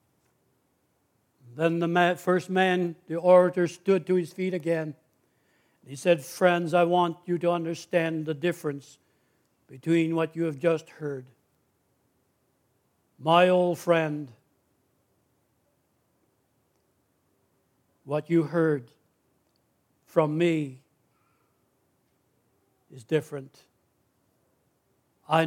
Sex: male